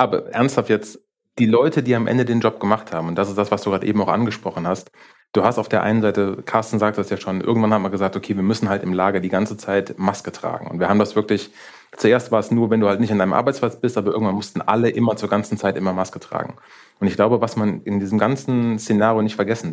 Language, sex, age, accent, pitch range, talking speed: German, male, 30-49, German, 100-115 Hz, 270 wpm